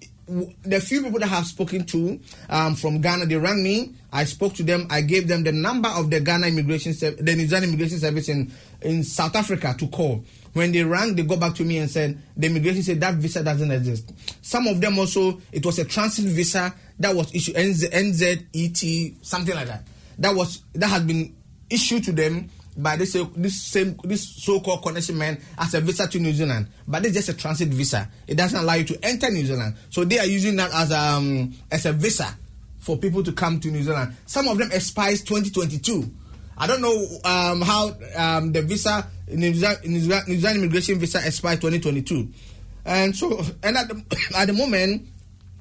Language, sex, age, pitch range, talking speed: English, male, 30-49, 155-190 Hz, 205 wpm